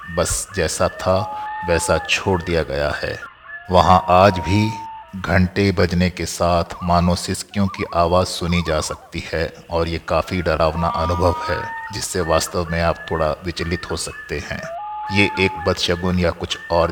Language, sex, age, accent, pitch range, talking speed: Hindi, male, 50-69, native, 85-95 Hz, 155 wpm